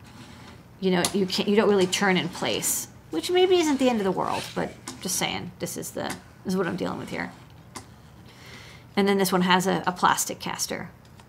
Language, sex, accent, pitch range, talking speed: English, female, American, 180-210 Hz, 215 wpm